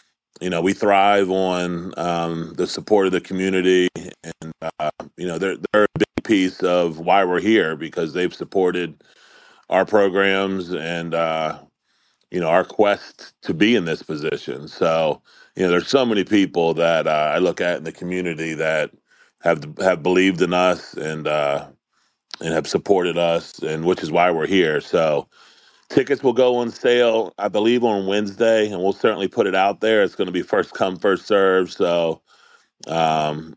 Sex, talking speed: male, 180 wpm